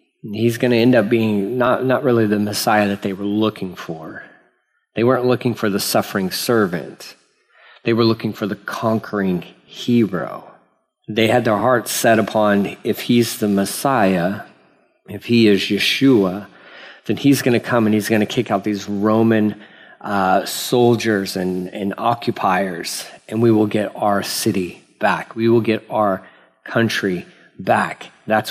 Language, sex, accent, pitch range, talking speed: English, male, American, 100-120 Hz, 160 wpm